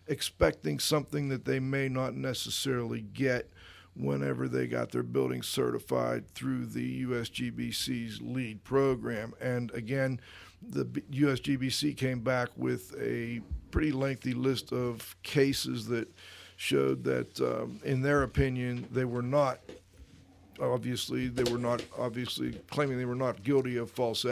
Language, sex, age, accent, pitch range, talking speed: English, male, 50-69, American, 110-135 Hz, 135 wpm